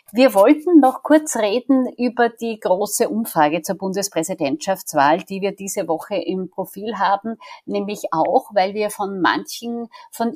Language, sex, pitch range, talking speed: German, female, 185-235 Hz, 145 wpm